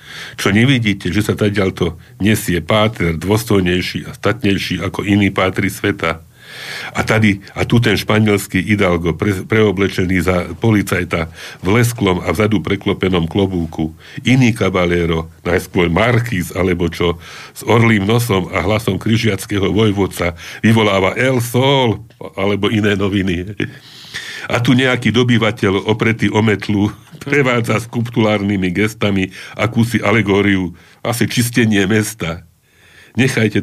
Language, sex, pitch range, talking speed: Slovak, male, 90-110 Hz, 120 wpm